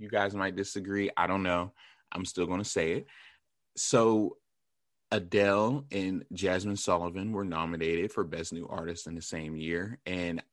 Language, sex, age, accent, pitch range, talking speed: English, male, 20-39, American, 95-120 Hz, 160 wpm